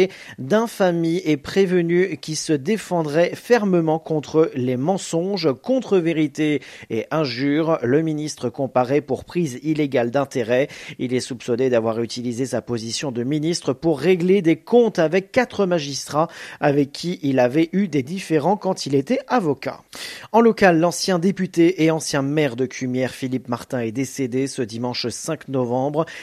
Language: French